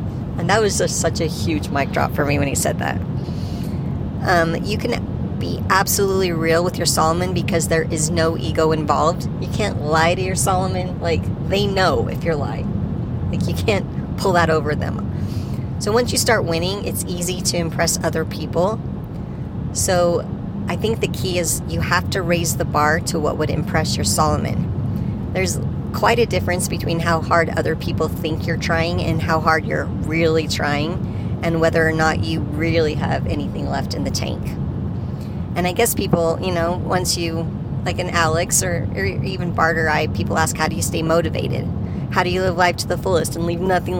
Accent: American